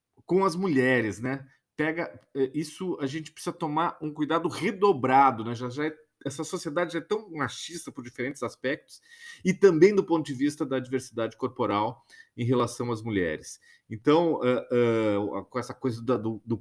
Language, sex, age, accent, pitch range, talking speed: Portuguese, male, 40-59, Brazilian, 110-145 Hz, 175 wpm